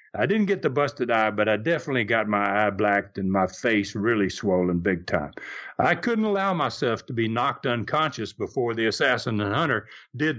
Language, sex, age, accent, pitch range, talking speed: English, male, 60-79, American, 110-155 Hz, 195 wpm